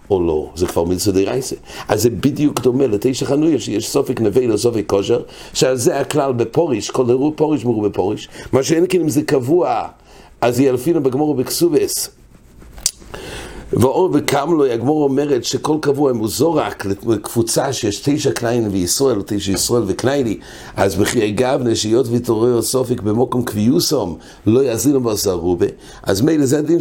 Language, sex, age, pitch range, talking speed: English, male, 60-79, 115-160 Hz, 125 wpm